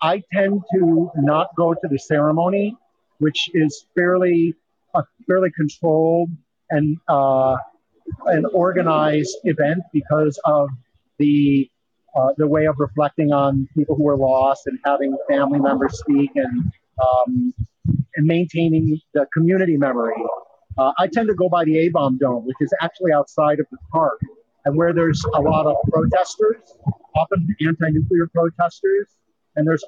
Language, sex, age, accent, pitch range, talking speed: English, male, 50-69, American, 135-170 Hz, 135 wpm